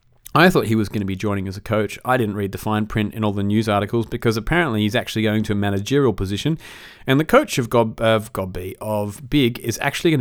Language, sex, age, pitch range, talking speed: English, male, 30-49, 100-120 Hz, 260 wpm